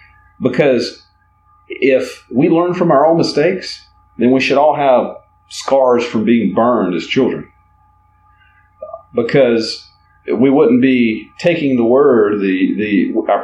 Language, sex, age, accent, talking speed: English, male, 40-59, American, 130 wpm